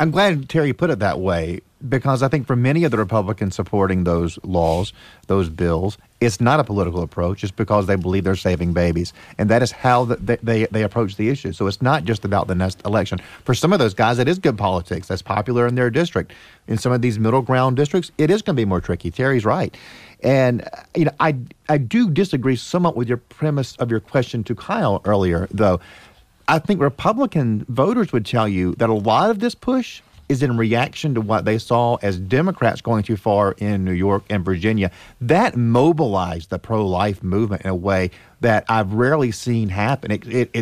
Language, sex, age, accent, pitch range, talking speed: English, male, 40-59, American, 95-135 Hz, 210 wpm